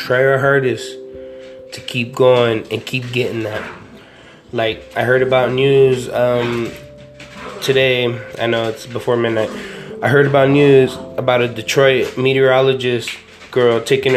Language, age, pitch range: English, 20-39, 120-140 Hz